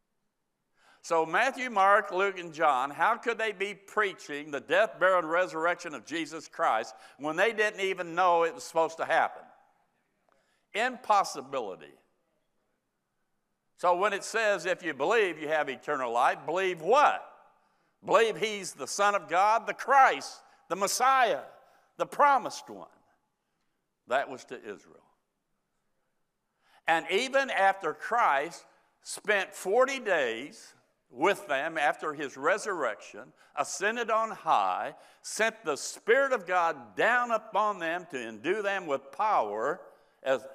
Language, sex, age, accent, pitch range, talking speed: English, male, 60-79, American, 165-215 Hz, 130 wpm